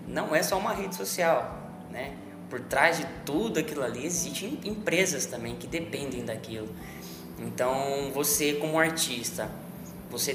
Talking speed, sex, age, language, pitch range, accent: 140 wpm, male, 20-39, Portuguese, 125-170 Hz, Brazilian